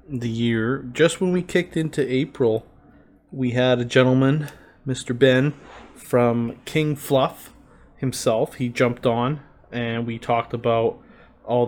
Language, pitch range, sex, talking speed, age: English, 105-120 Hz, male, 135 wpm, 20-39